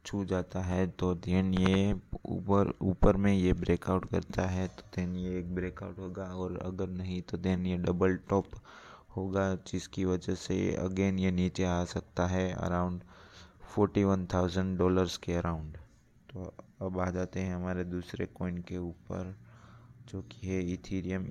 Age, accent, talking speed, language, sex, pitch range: 20-39, native, 165 wpm, Hindi, male, 90-95 Hz